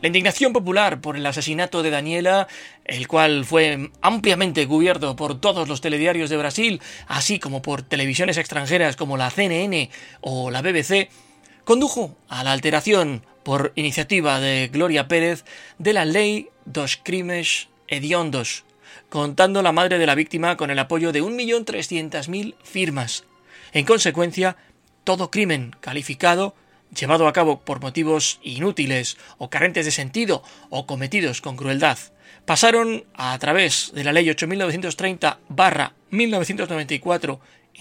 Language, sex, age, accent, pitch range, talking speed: Spanish, male, 30-49, Spanish, 145-190 Hz, 130 wpm